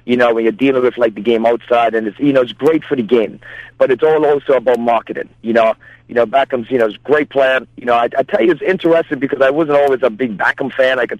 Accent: American